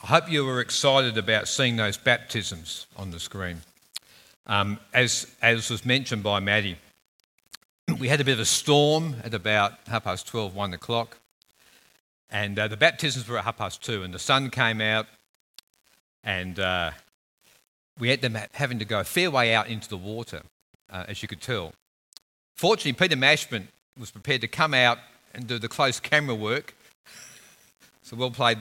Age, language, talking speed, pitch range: 50-69, English, 175 wpm, 105-135 Hz